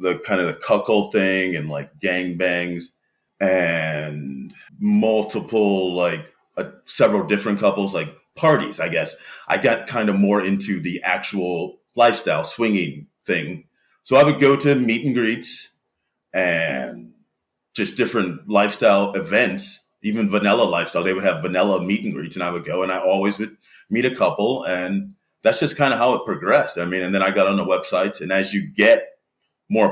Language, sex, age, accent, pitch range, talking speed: English, male, 30-49, American, 90-115 Hz, 175 wpm